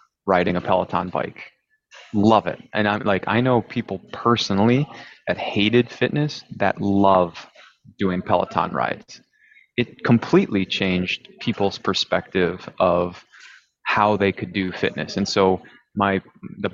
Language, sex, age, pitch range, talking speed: English, male, 20-39, 95-115 Hz, 130 wpm